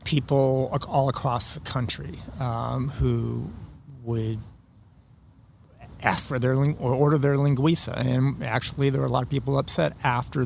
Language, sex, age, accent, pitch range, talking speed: English, male, 30-49, American, 115-135 Hz, 150 wpm